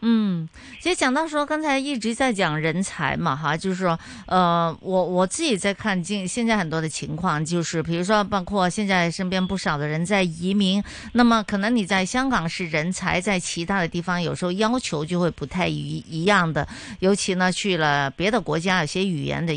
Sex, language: female, Chinese